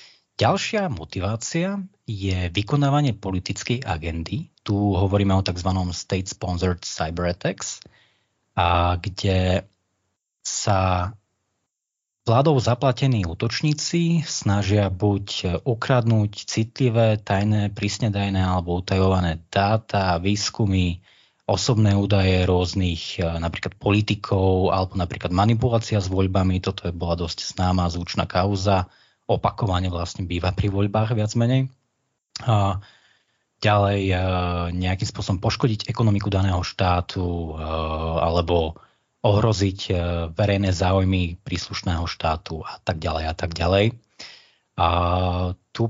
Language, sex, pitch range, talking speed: Slovak, male, 90-110 Hz, 100 wpm